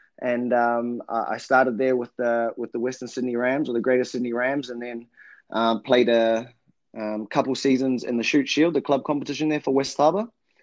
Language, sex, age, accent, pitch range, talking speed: English, male, 20-39, Australian, 110-125 Hz, 205 wpm